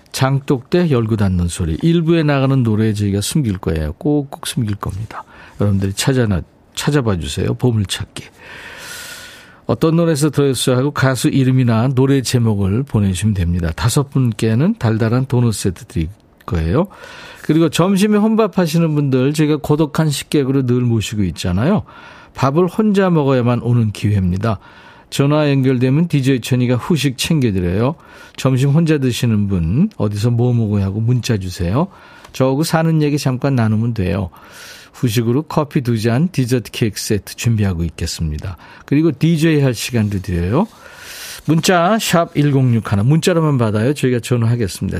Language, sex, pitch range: Korean, male, 105-150 Hz